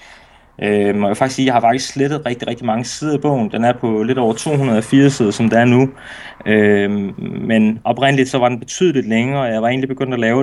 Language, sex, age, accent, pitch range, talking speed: Danish, male, 20-39, native, 110-140 Hz, 225 wpm